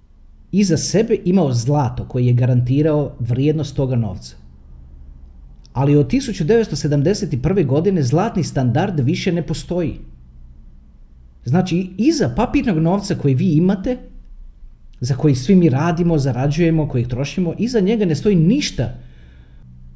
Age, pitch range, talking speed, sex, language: 40-59, 120-185 Hz, 115 wpm, male, Croatian